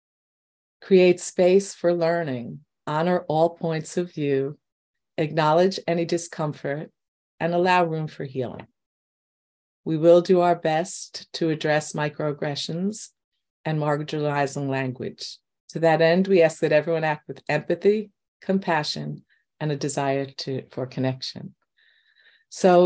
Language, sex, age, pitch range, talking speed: English, female, 50-69, 145-175 Hz, 120 wpm